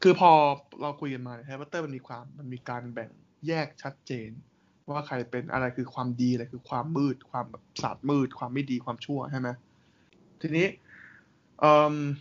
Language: Thai